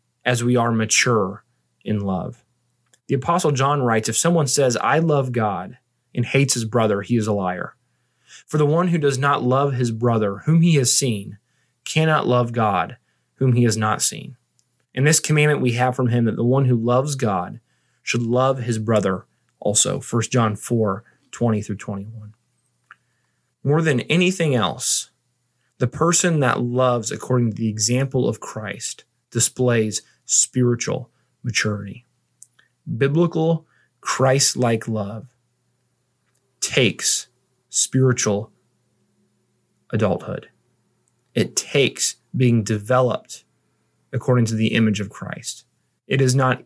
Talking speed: 135 wpm